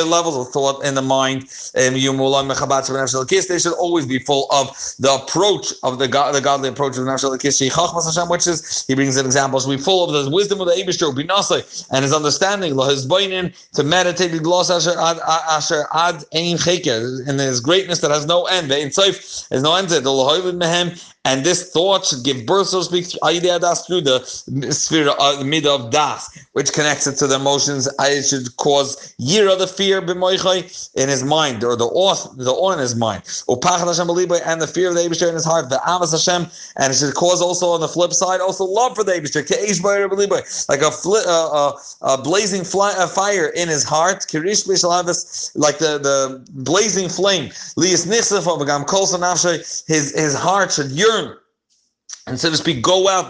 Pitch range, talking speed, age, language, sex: 140-180 Hz, 190 wpm, 30-49, English, male